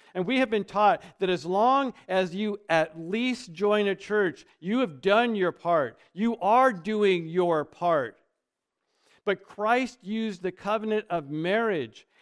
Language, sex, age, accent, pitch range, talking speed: English, male, 50-69, American, 175-220 Hz, 155 wpm